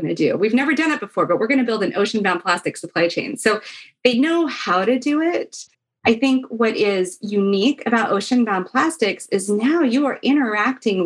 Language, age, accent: English, 30-49, American